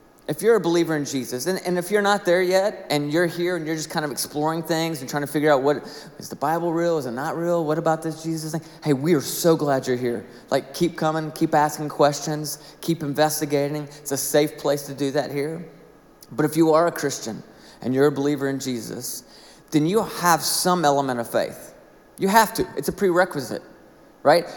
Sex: male